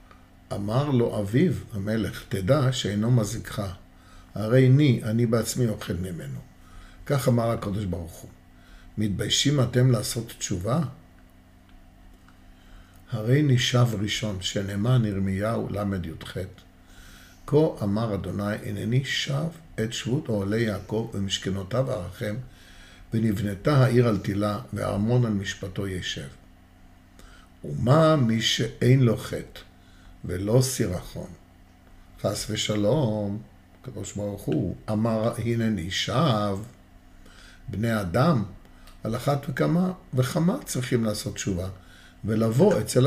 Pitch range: 90-125 Hz